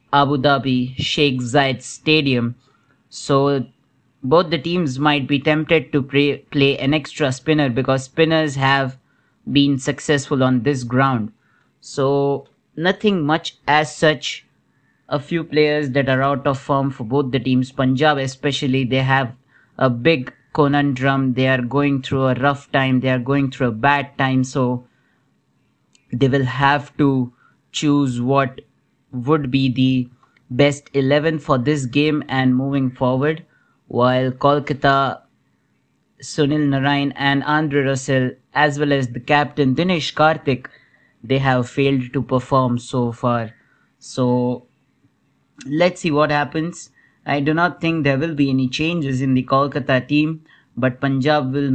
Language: English